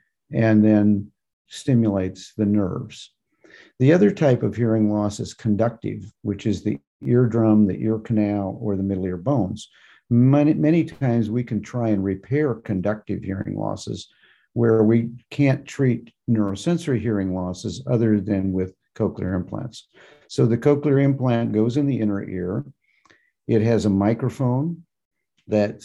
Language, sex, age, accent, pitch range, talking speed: English, male, 50-69, American, 105-125 Hz, 145 wpm